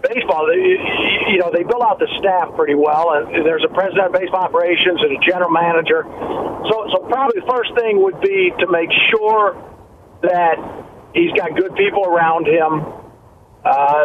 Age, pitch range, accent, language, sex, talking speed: 50-69, 165-215 Hz, American, English, male, 175 wpm